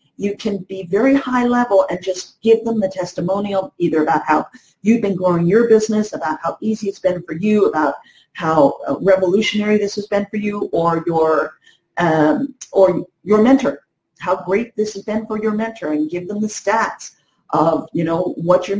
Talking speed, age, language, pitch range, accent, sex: 190 wpm, 50-69, English, 175-220 Hz, American, female